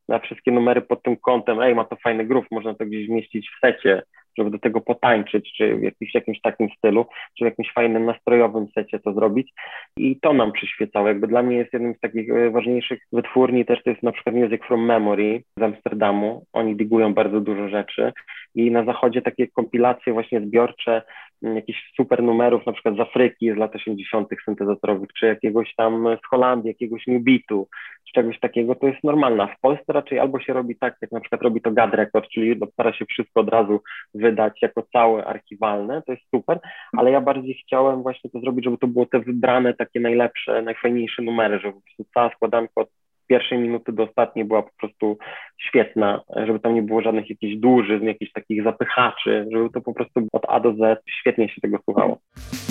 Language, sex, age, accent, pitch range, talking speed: Polish, male, 20-39, native, 110-125 Hz, 195 wpm